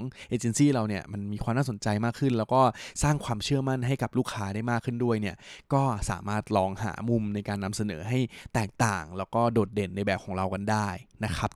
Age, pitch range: 20-39, 105-125 Hz